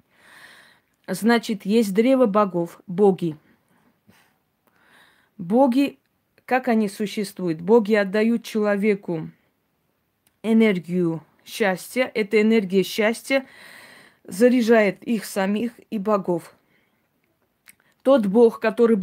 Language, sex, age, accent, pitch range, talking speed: Russian, female, 20-39, native, 190-230 Hz, 80 wpm